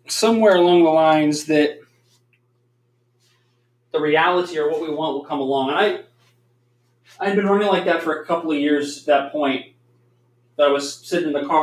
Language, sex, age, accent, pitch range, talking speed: English, male, 20-39, American, 120-165 Hz, 185 wpm